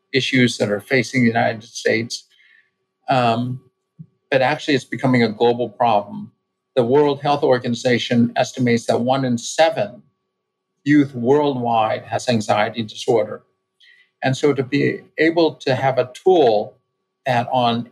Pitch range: 120-145 Hz